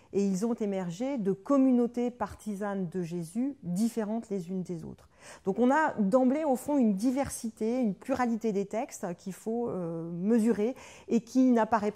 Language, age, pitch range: French, 40-59, 185-235 Hz